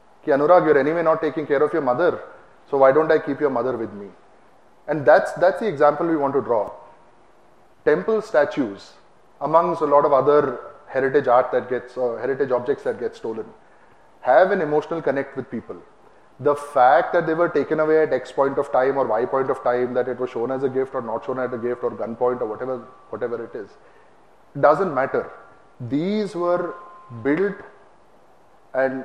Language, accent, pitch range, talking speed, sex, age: English, Indian, 130-160 Hz, 190 wpm, male, 30-49